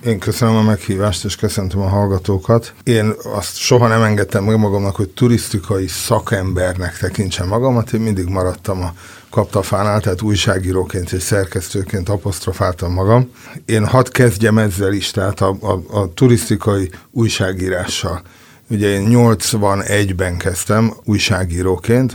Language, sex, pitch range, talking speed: Hungarian, male, 95-115 Hz, 125 wpm